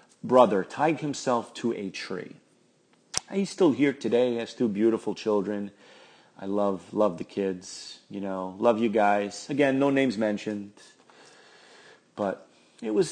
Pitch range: 95-125 Hz